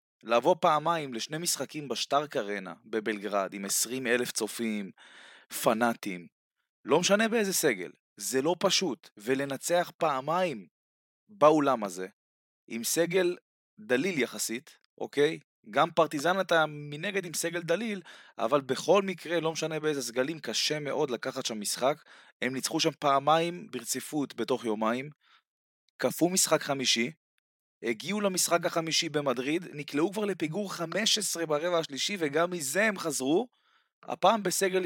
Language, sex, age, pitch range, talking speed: Hebrew, male, 20-39, 130-180 Hz, 125 wpm